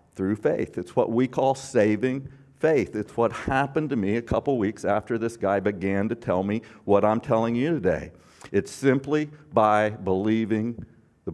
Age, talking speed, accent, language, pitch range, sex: 50-69, 175 wpm, American, English, 105-140 Hz, male